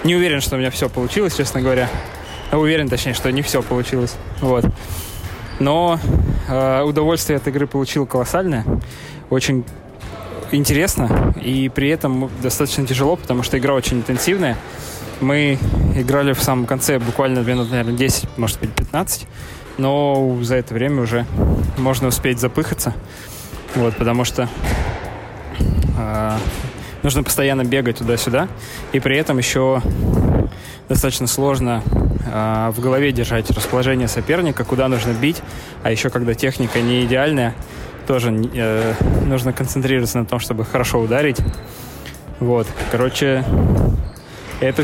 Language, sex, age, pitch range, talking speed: Russian, male, 20-39, 110-135 Hz, 130 wpm